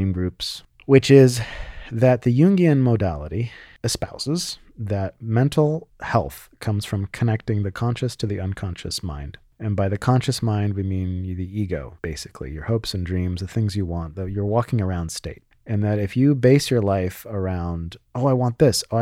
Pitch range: 90-115 Hz